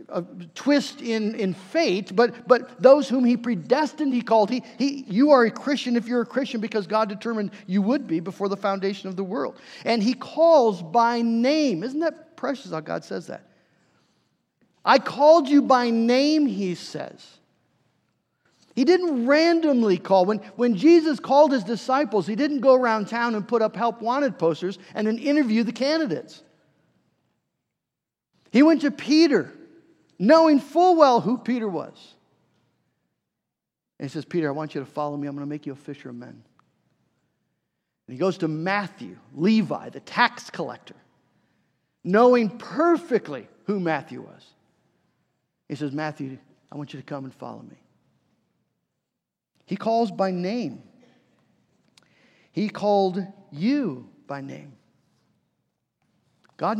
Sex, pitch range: male, 185-265 Hz